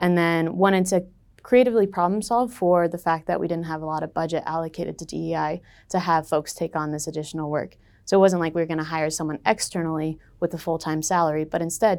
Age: 20-39